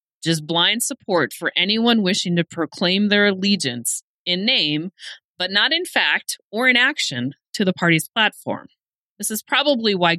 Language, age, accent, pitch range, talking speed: English, 30-49, American, 165-230 Hz, 160 wpm